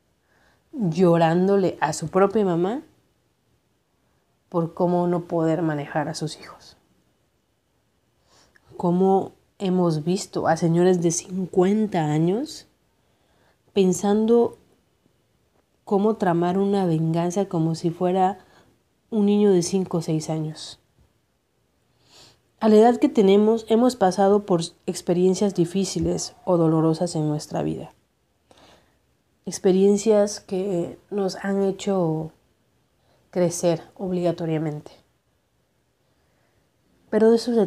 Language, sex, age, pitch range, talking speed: Spanish, female, 30-49, 165-195 Hz, 100 wpm